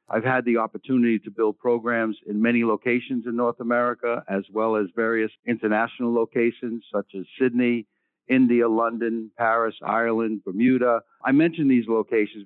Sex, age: male, 60-79